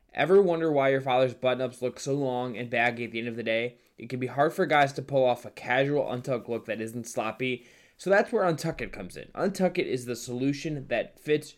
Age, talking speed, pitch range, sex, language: 10-29, 245 wpm, 120-145 Hz, male, English